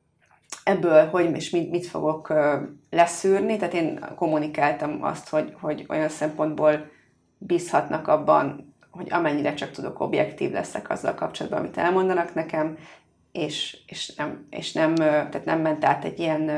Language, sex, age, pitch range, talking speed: Hungarian, female, 30-49, 155-175 Hz, 125 wpm